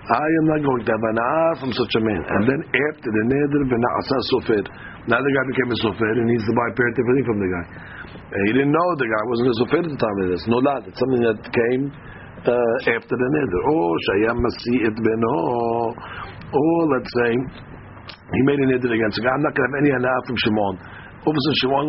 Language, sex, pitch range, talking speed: English, male, 110-130 Hz, 235 wpm